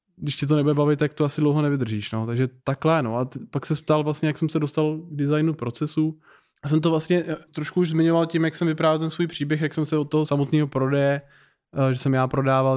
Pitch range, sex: 135-150 Hz, male